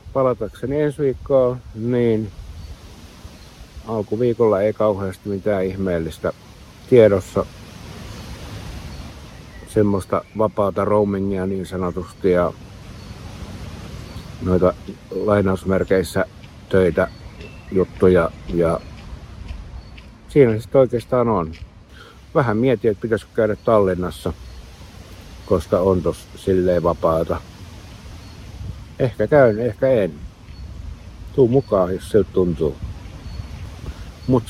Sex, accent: male, native